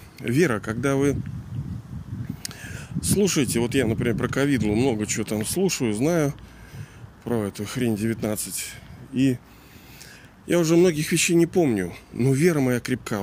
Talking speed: 130 wpm